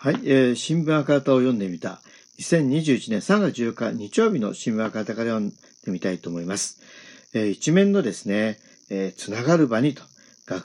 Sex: male